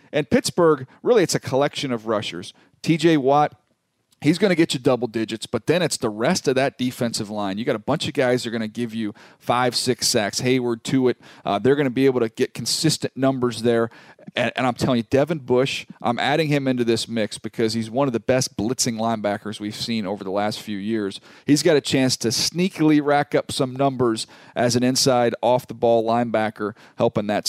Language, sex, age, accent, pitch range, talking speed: English, male, 40-59, American, 110-140 Hz, 220 wpm